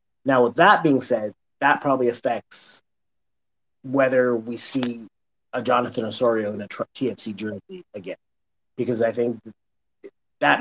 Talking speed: 130 wpm